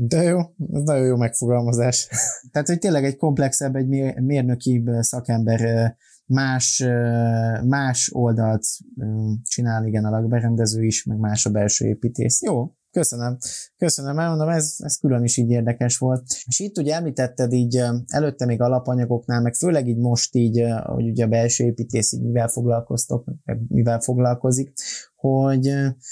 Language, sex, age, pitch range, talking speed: Hungarian, male, 20-39, 115-135 Hz, 140 wpm